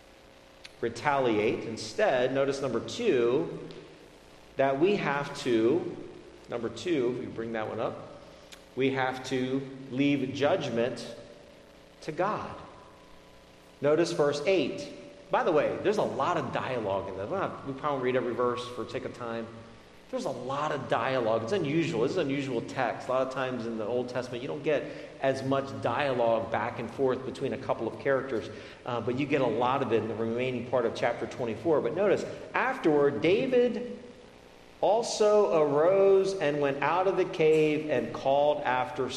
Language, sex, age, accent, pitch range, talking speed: English, male, 40-59, American, 105-145 Hz, 170 wpm